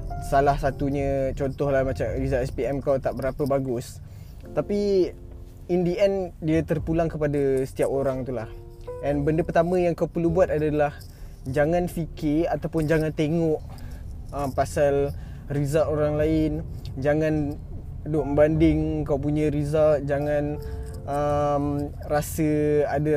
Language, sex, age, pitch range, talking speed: Malay, male, 20-39, 140-160 Hz, 125 wpm